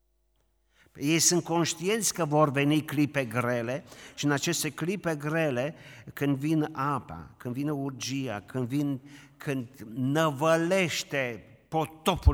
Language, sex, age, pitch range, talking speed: Romanian, male, 50-69, 100-150 Hz, 115 wpm